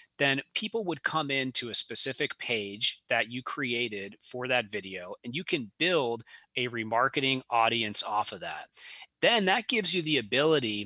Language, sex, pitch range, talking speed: English, male, 115-145 Hz, 165 wpm